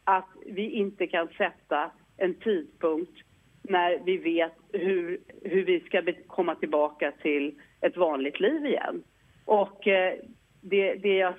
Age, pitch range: 40-59, 160-235 Hz